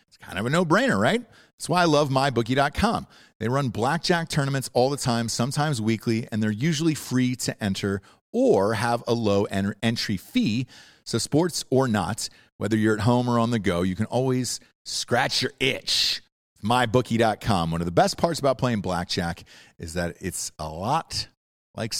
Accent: American